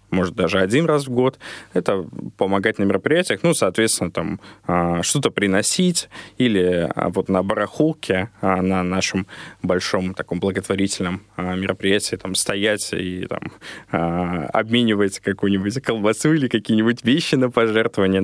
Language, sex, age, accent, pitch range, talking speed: Russian, male, 20-39, native, 95-120 Hz, 120 wpm